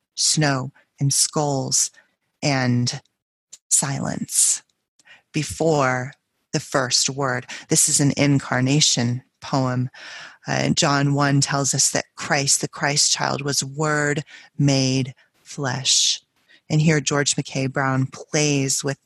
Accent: American